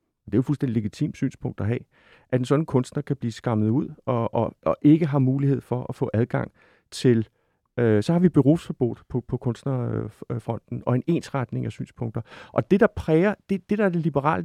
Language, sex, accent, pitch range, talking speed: Danish, male, native, 125-160 Hz, 210 wpm